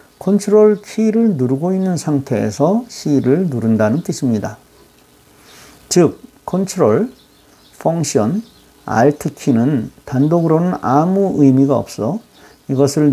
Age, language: 50-69, Korean